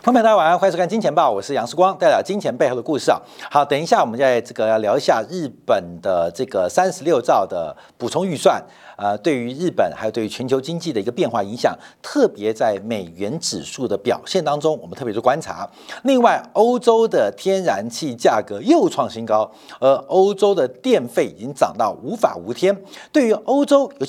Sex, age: male, 50-69